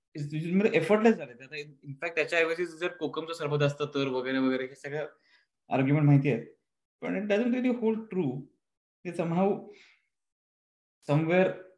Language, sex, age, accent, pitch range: Marathi, male, 20-39, native, 130-170 Hz